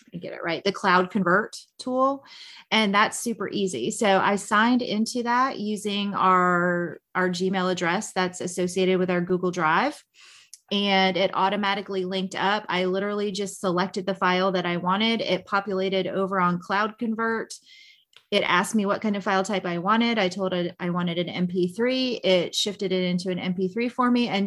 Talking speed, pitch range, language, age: 180 wpm, 185-215 Hz, English, 30-49